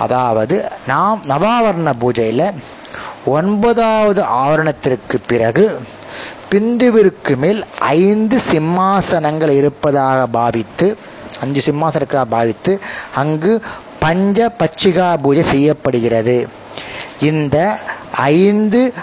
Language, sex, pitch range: Tamil, male, 140-195 Hz